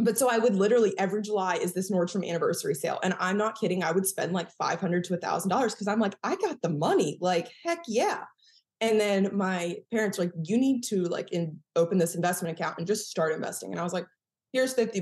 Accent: American